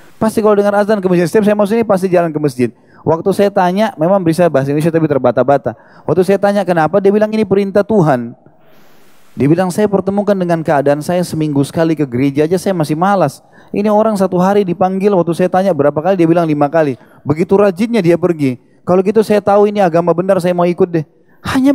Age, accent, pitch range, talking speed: 20-39, native, 155-205 Hz, 210 wpm